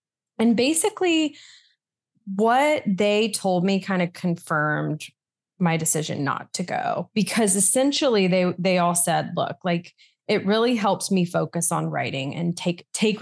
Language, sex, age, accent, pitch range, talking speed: English, female, 20-39, American, 170-230 Hz, 145 wpm